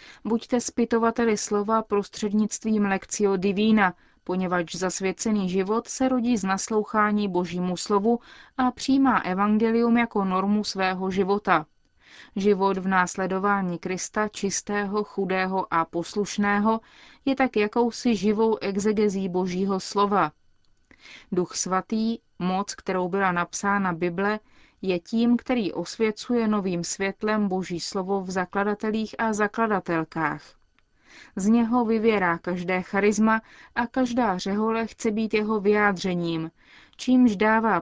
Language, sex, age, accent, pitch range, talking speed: Czech, female, 30-49, native, 185-225 Hz, 110 wpm